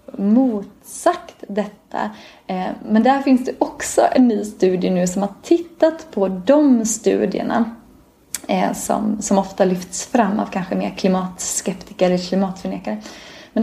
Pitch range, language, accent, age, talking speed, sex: 185-235 Hz, English, Swedish, 20-39, 130 wpm, female